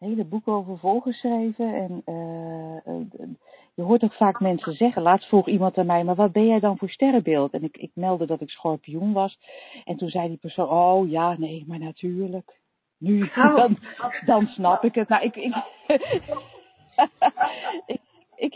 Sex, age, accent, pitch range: female, 40-59, Dutch, 180-225 Hz